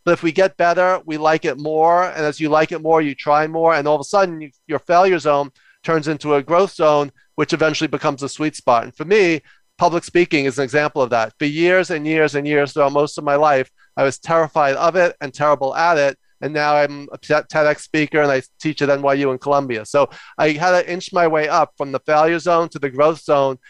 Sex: male